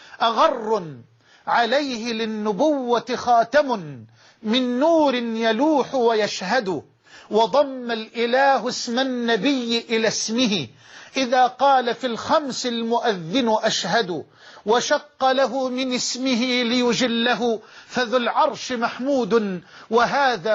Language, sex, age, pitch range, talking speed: Arabic, male, 50-69, 225-265 Hz, 85 wpm